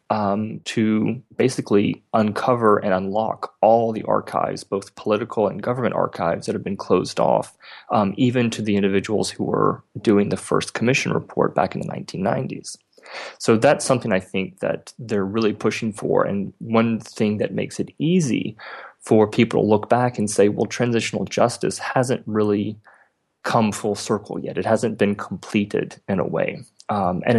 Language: English